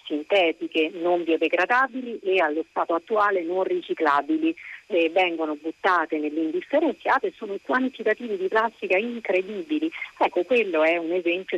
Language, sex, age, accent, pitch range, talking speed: Italian, female, 40-59, native, 165-210 Hz, 120 wpm